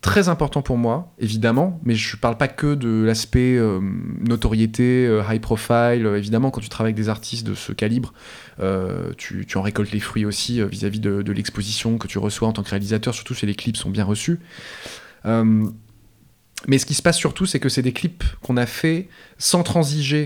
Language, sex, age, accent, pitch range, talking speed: French, male, 20-39, French, 110-145 Hz, 210 wpm